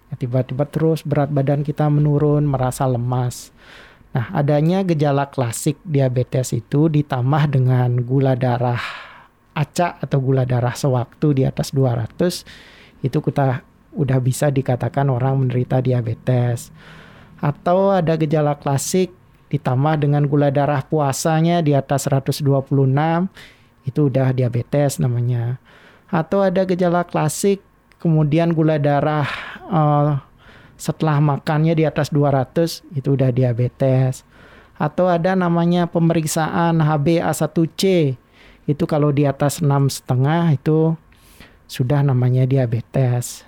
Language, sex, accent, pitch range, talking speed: Indonesian, male, native, 130-155 Hz, 110 wpm